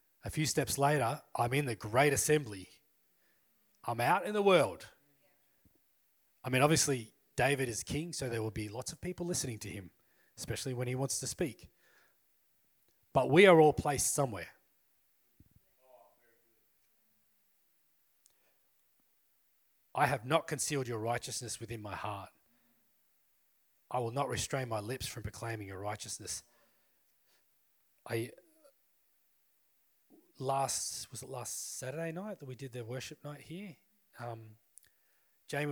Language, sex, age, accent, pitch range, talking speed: English, male, 30-49, Australian, 110-140 Hz, 130 wpm